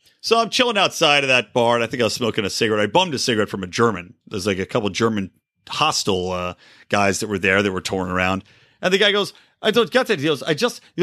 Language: English